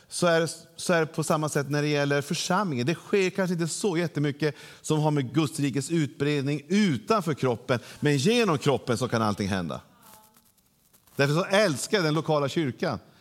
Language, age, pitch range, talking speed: Swedish, 40-59, 125-160 Hz, 185 wpm